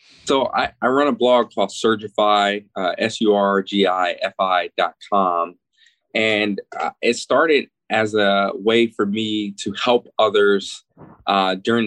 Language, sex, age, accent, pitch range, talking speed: English, male, 20-39, American, 100-125 Hz, 160 wpm